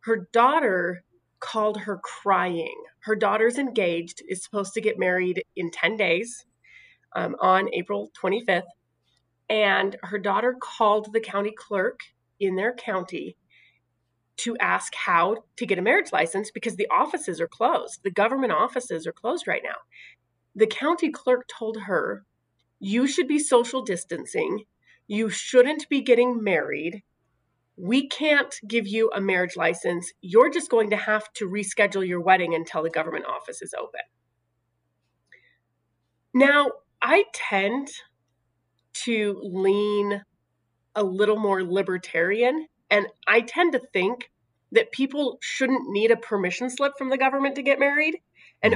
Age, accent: 30-49, American